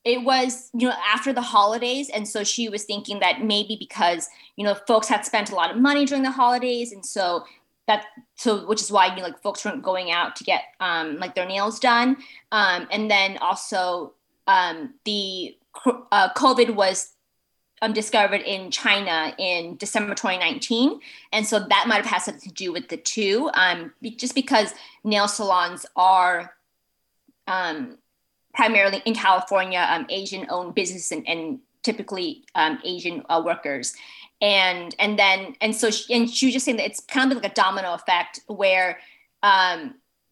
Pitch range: 185-245 Hz